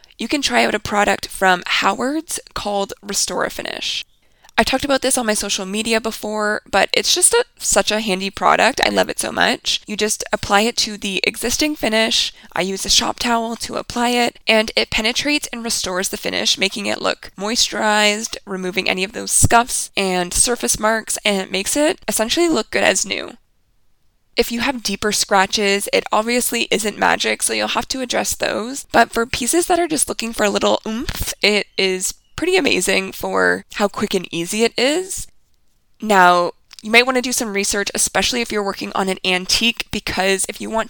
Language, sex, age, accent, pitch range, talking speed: English, female, 20-39, American, 185-235 Hz, 190 wpm